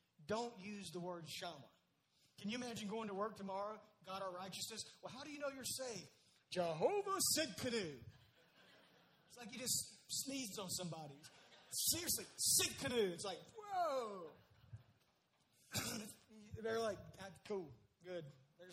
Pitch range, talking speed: 170-225 Hz, 135 wpm